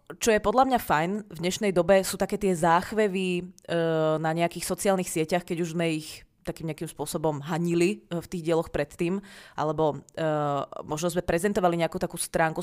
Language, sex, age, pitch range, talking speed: Czech, female, 20-39, 160-190 Hz, 175 wpm